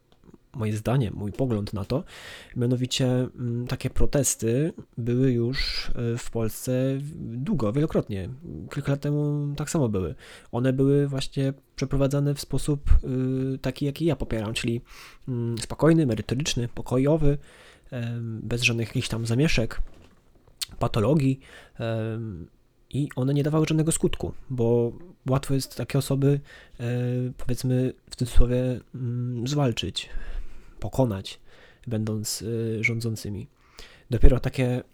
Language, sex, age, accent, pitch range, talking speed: Polish, male, 20-39, native, 110-135 Hz, 110 wpm